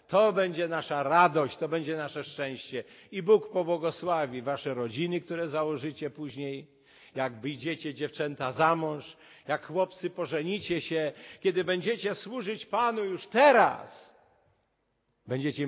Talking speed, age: 125 wpm, 50-69